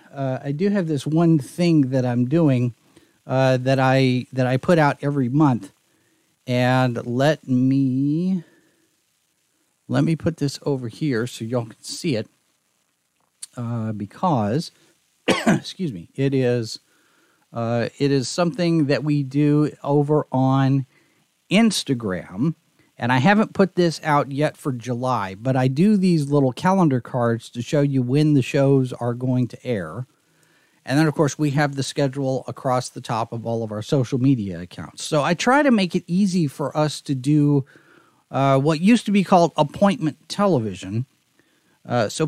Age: 40-59